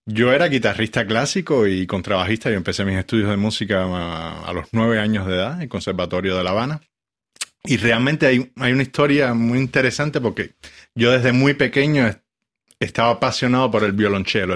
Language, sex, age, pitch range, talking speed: Spanish, male, 30-49, 100-120 Hz, 180 wpm